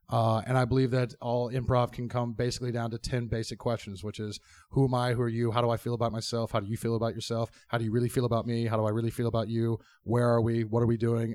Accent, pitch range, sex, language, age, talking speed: American, 105-120 Hz, male, English, 30-49, 295 wpm